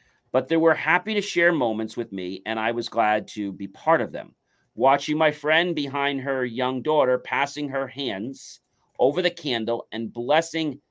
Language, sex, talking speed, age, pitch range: English, male, 180 wpm, 40-59, 120-150 Hz